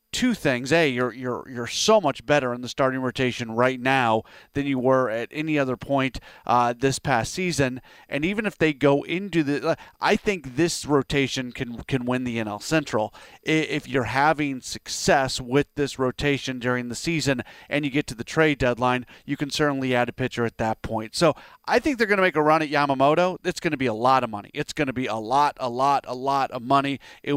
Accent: American